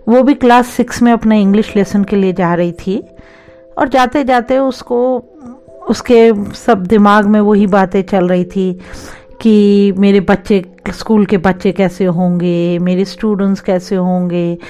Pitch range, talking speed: 185-240 Hz, 150 wpm